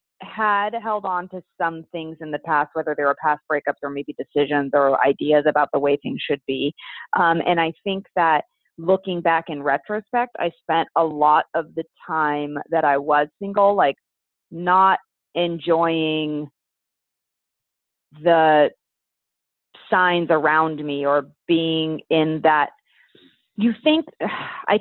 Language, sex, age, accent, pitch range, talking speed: English, female, 30-49, American, 155-200 Hz, 145 wpm